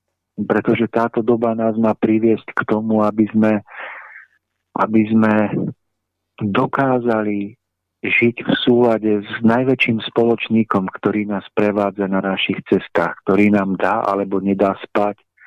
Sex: male